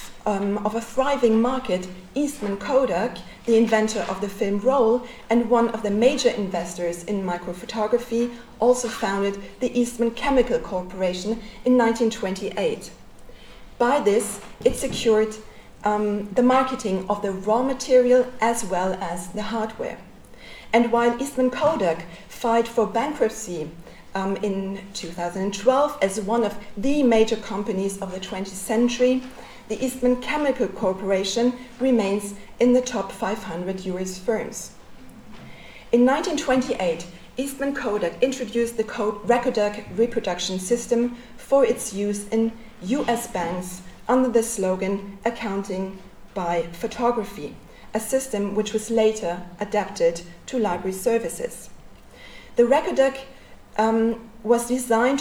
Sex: female